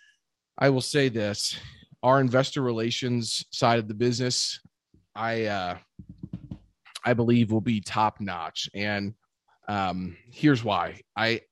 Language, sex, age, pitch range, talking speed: English, male, 30-49, 100-125 Hz, 125 wpm